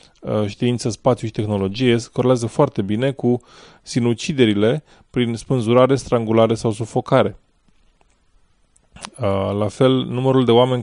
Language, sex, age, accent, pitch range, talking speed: English, male, 20-39, Romanian, 105-125 Hz, 110 wpm